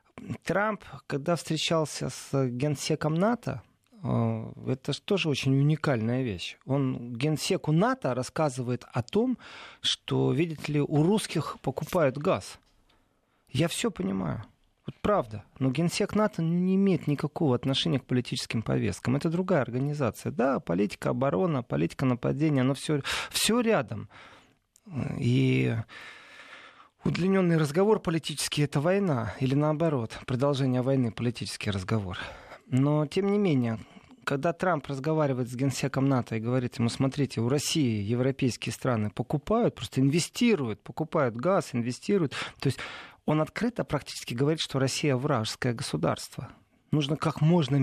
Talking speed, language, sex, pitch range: 130 wpm, Russian, male, 125-165 Hz